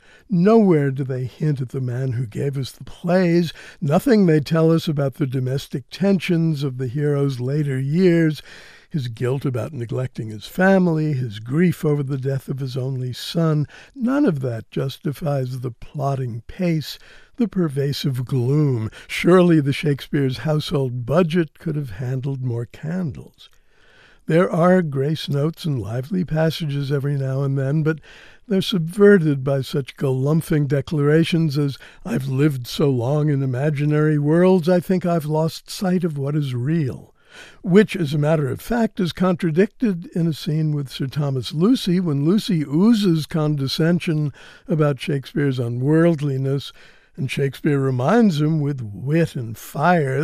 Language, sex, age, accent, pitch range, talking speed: English, male, 60-79, American, 135-170 Hz, 150 wpm